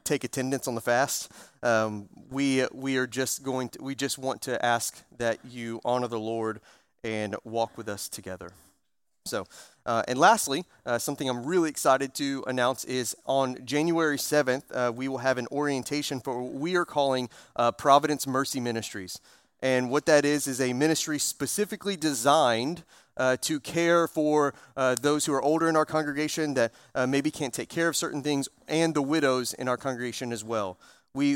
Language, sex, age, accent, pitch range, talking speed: English, male, 30-49, American, 125-160 Hz, 185 wpm